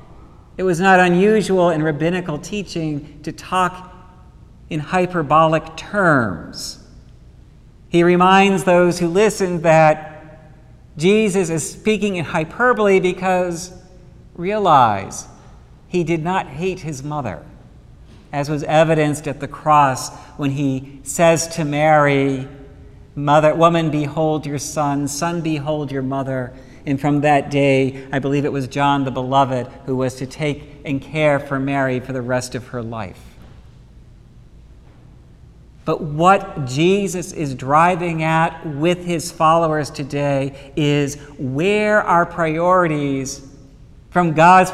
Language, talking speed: English, 125 wpm